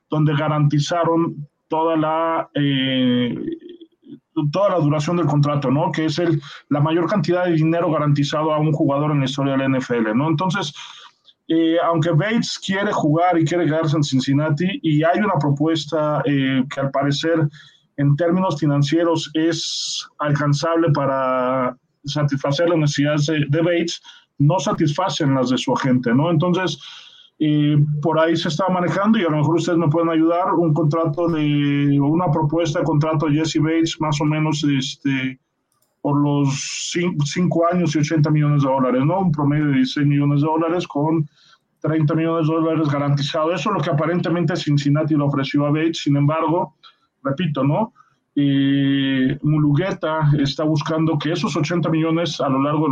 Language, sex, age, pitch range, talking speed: Spanish, male, 20-39, 145-165 Hz, 160 wpm